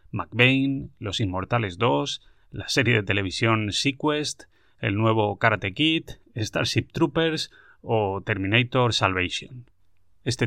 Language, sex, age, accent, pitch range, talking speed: Spanish, male, 30-49, Spanish, 95-120 Hz, 110 wpm